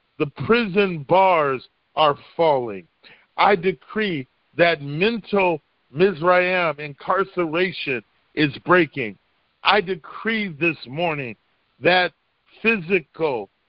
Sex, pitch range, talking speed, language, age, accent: male, 160-195 Hz, 85 wpm, English, 40-59, American